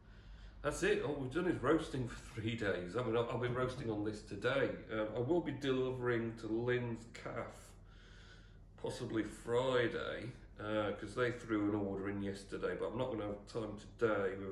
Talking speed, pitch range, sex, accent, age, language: 180 wpm, 95-120 Hz, male, British, 40-59, English